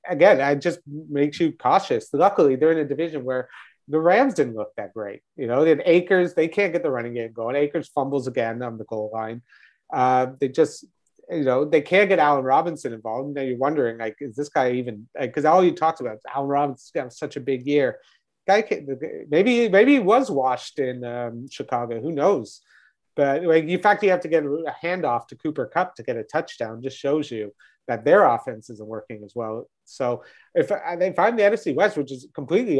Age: 30-49